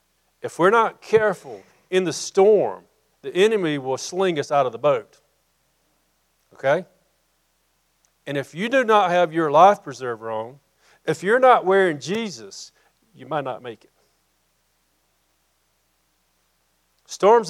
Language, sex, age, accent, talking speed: English, male, 50-69, American, 130 wpm